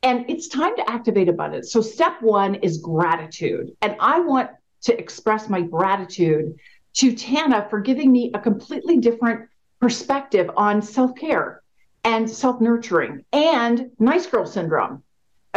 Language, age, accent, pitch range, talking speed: English, 50-69, American, 200-265 Hz, 135 wpm